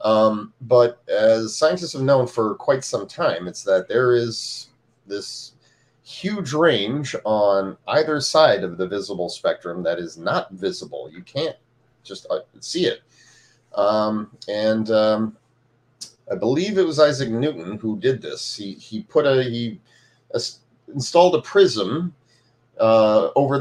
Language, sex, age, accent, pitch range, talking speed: English, male, 30-49, American, 115-140 Hz, 140 wpm